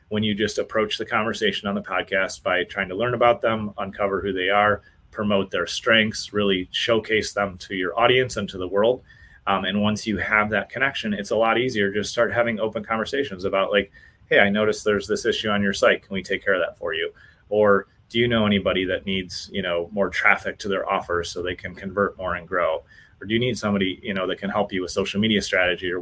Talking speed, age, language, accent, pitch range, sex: 240 wpm, 30-49, English, American, 95-110 Hz, male